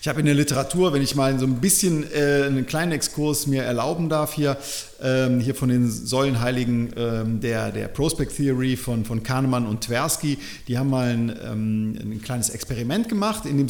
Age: 40-59